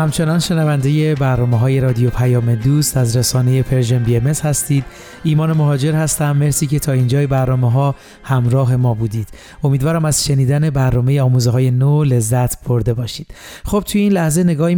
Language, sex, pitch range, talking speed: Persian, male, 130-155 Hz, 160 wpm